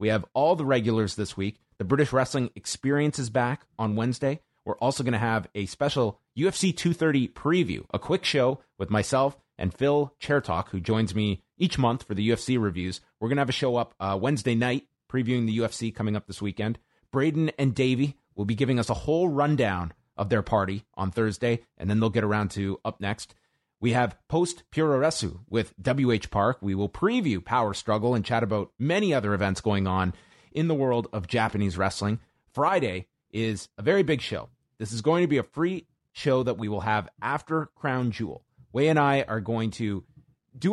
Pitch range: 105-140 Hz